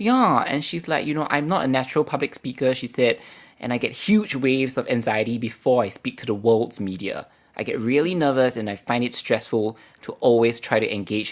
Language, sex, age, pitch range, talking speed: English, male, 20-39, 105-135 Hz, 225 wpm